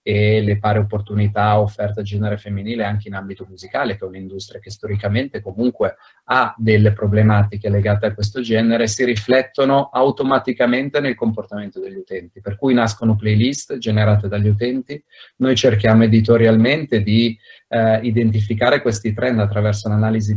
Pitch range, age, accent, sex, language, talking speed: 100-120 Hz, 30-49, native, male, Italian, 145 wpm